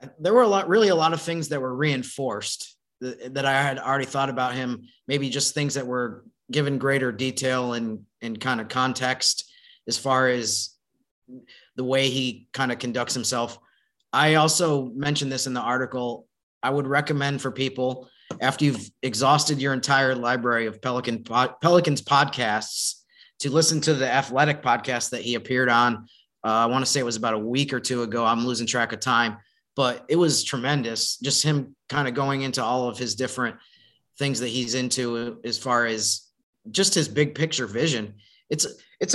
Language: English